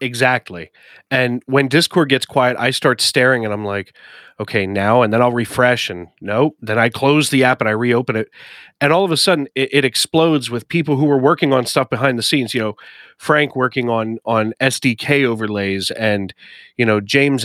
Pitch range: 115-145 Hz